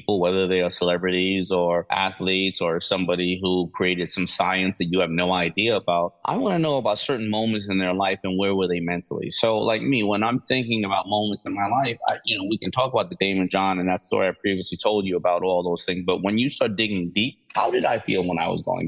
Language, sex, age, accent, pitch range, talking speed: English, male, 30-49, American, 95-115 Hz, 255 wpm